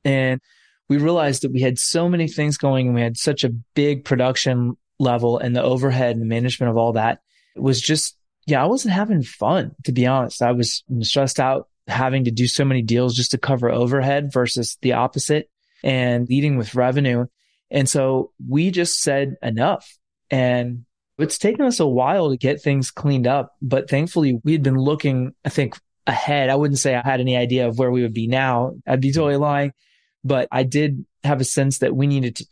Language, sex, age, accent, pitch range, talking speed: English, male, 20-39, American, 120-140 Hz, 205 wpm